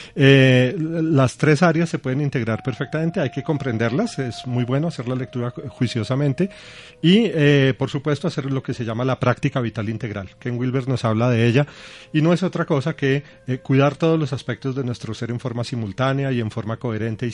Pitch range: 120-150 Hz